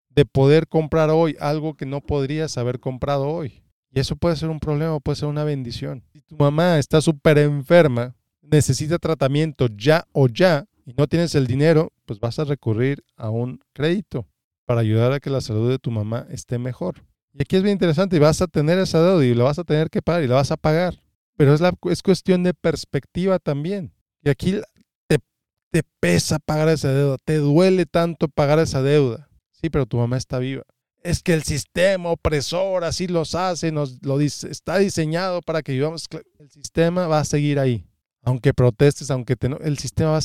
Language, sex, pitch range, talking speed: Spanish, male, 130-160 Hz, 205 wpm